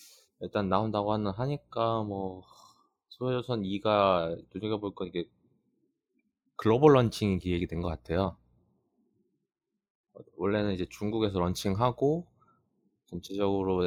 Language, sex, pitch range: Korean, male, 85-110 Hz